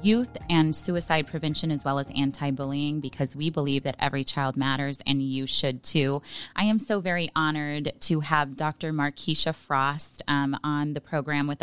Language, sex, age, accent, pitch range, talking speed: English, female, 20-39, American, 140-165 Hz, 175 wpm